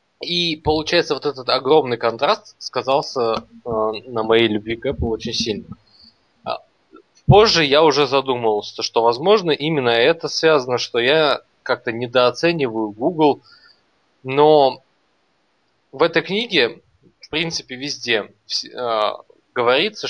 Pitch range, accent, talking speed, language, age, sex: 115-160 Hz, native, 105 wpm, Russian, 20-39, male